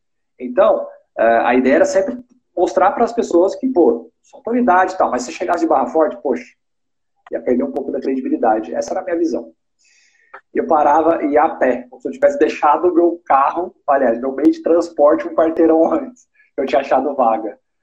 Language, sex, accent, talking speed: Portuguese, male, Brazilian, 205 wpm